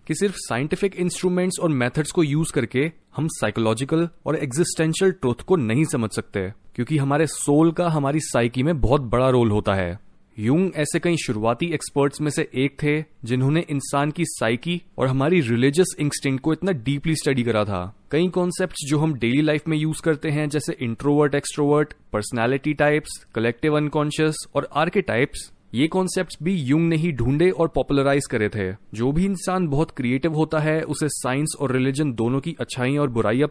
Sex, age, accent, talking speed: male, 30-49, native, 175 wpm